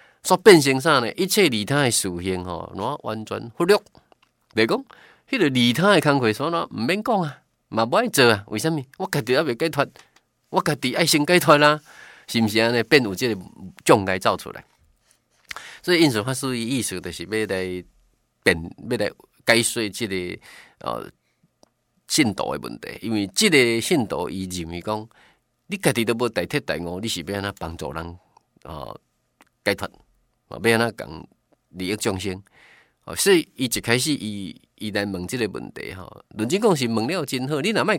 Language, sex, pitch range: Chinese, male, 110-155 Hz